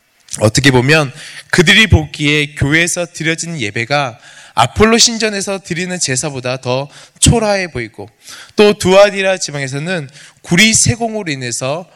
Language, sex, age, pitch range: Korean, male, 20-39, 135-180 Hz